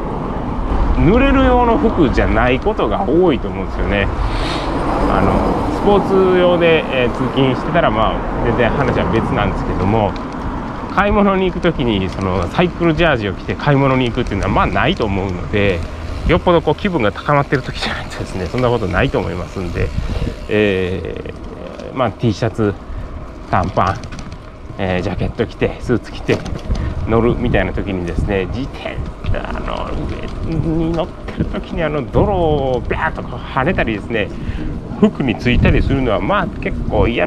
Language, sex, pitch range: Japanese, male, 95-145 Hz